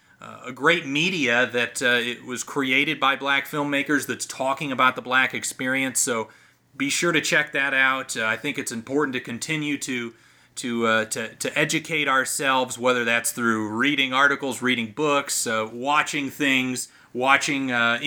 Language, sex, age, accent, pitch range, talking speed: English, male, 30-49, American, 125-150 Hz, 170 wpm